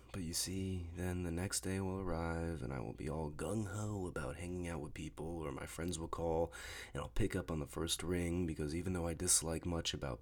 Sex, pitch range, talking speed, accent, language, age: male, 70-90 Hz, 235 wpm, American, English, 30-49